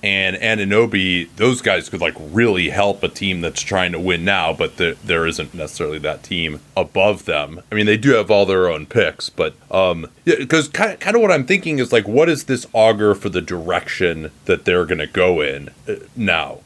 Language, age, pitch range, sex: English, 30-49, 90-120 Hz, male